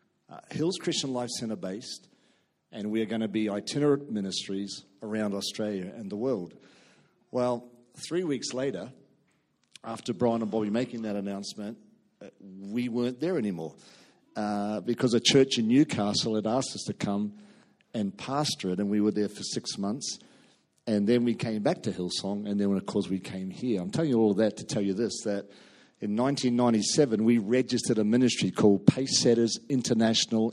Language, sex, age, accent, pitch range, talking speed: English, male, 50-69, Australian, 105-130 Hz, 175 wpm